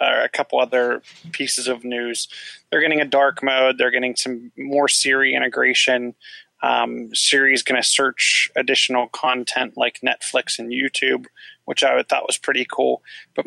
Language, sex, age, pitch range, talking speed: English, male, 20-39, 120-140 Hz, 165 wpm